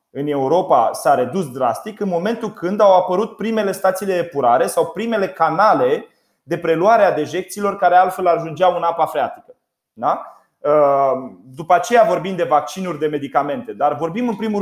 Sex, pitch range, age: male, 155-220 Hz, 30-49